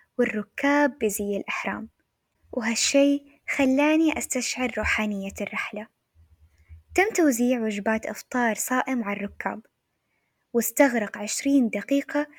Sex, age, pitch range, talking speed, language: female, 10-29, 210-270 Hz, 85 wpm, Arabic